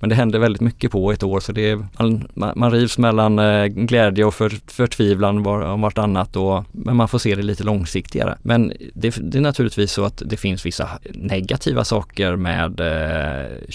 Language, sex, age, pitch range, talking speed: Swedish, male, 20-39, 95-110 Hz, 190 wpm